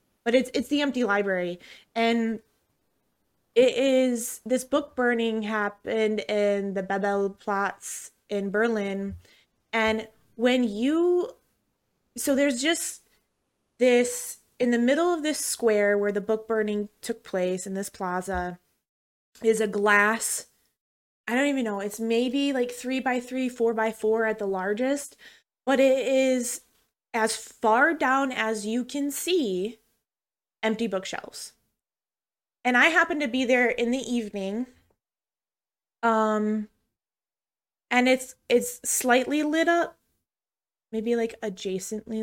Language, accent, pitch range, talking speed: English, American, 210-255 Hz, 130 wpm